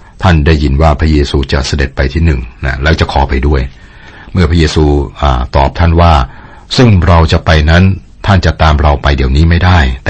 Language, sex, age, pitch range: Thai, male, 60-79, 70-90 Hz